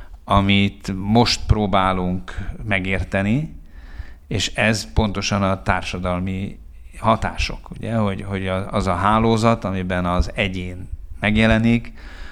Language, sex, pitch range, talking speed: Hungarian, male, 90-110 Hz, 95 wpm